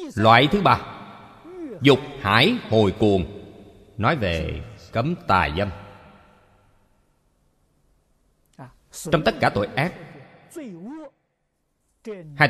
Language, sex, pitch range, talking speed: Vietnamese, male, 85-120 Hz, 85 wpm